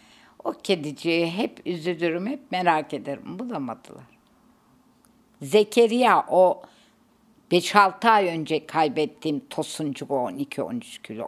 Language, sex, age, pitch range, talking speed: Turkish, female, 60-79, 160-220 Hz, 95 wpm